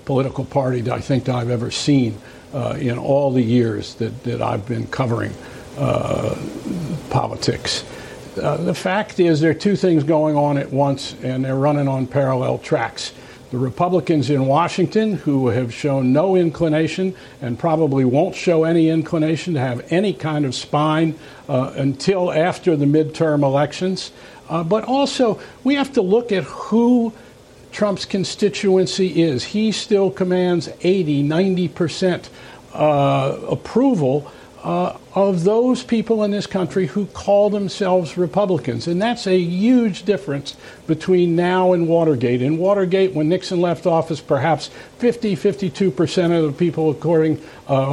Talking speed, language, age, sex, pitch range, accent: 150 wpm, English, 60-79, male, 140-185 Hz, American